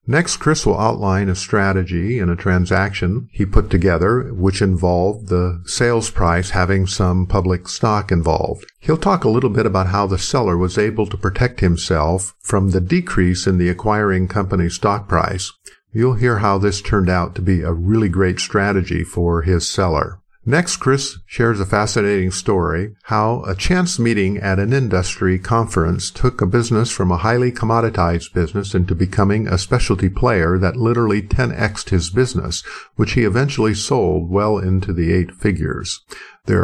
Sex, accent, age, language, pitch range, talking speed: male, American, 50-69, English, 90-110 Hz, 165 wpm